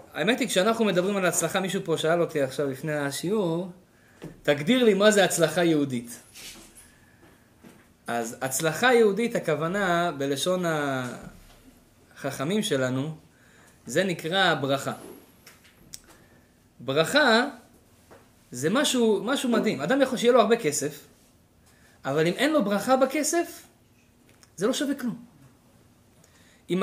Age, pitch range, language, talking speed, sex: 20-39, 155-240 Hz, Hebrew, 115 wpm, male